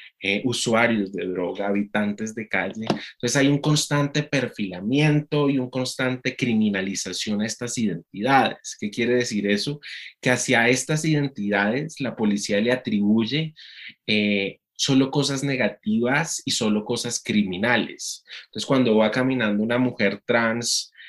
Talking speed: 130 wpm